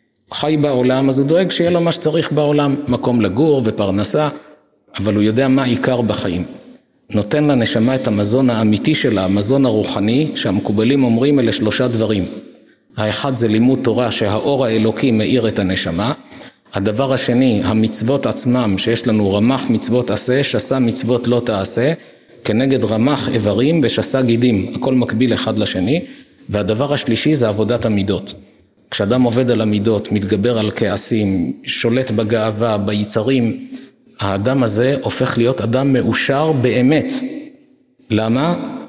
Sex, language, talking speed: male, Hebrew, 135 wpm